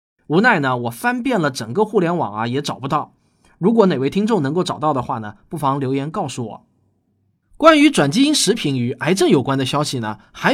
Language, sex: Chinese, male